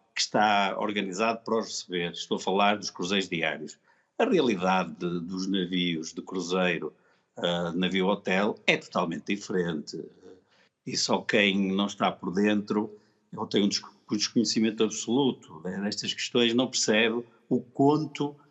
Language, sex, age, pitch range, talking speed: Portuguese, male, 50-69, 100-130 Hz, 145 wpm